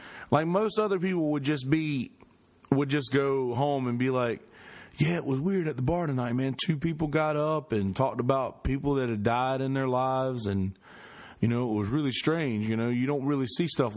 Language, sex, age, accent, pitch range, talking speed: English, male, 30-49, American, 125-160 Hz, 220 wpm